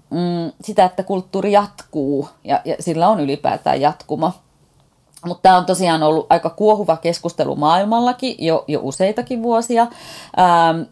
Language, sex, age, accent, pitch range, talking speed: Finnish, female, 30-49, native, 155-210 Hz, 130 wpm